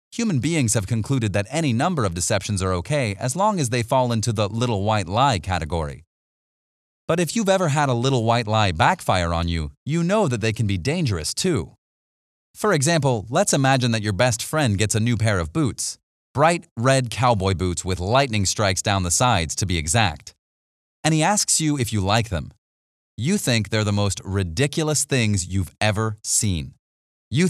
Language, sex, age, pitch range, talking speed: English, male, 30-49, 95-140 Hz, 190 wpm